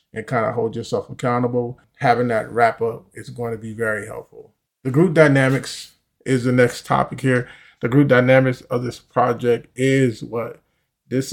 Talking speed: 175 wpm